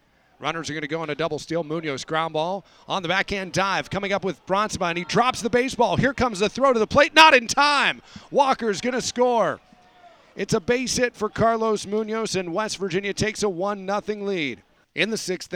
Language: English